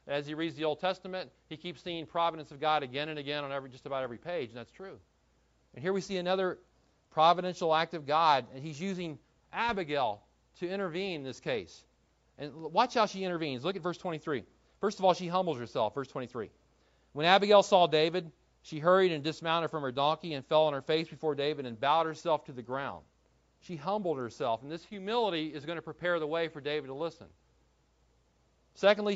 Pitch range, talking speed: 145-185 Hz, 205 wpm